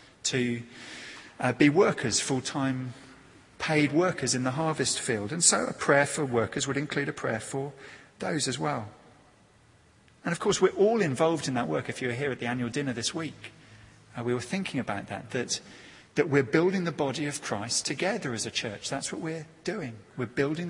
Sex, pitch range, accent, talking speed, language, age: male, 120-150 Hz, British, 195 wpm, English, 40-59